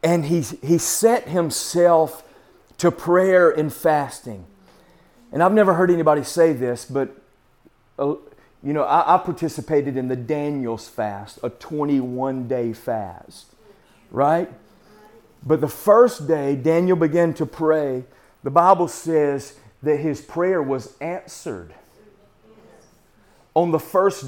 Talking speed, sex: 120 wpm, male